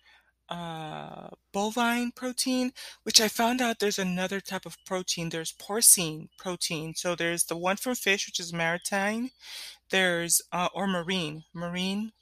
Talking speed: 140 wpm